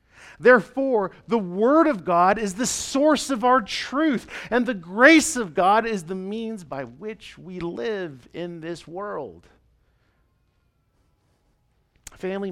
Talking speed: 130 wpm